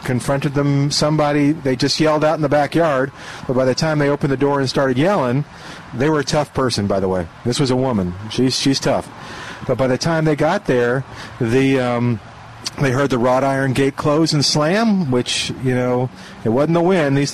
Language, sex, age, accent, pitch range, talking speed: English, male, 40-59, American, 125-155 Hz, 215 wpm